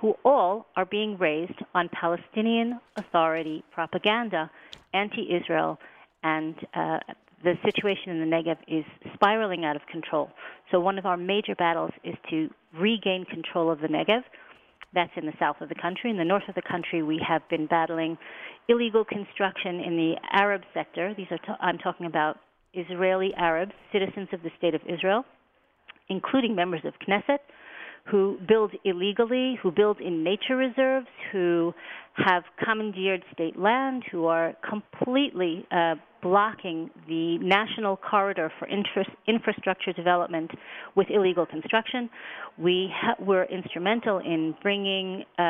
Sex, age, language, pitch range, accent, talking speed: female, 40-59, English, 170-210 Hz, American, 140 wpm